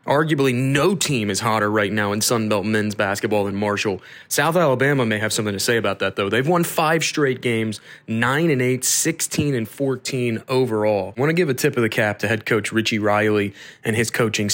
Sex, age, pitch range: male, 20-39, 110-145 Hz